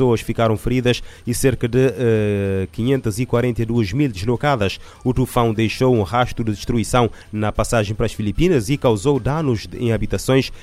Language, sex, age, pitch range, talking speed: Portuguese, male, 30-49, 105-130 Hz, 145 wpm